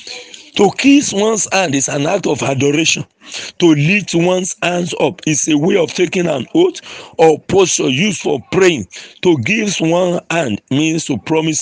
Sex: male